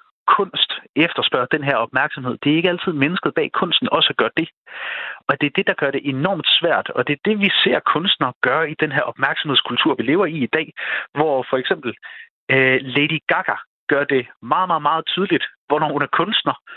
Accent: native